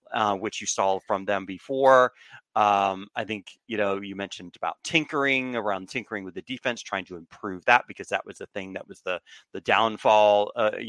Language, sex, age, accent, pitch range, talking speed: English, male, 30-49, American, 100-120 Hz, 200 wpm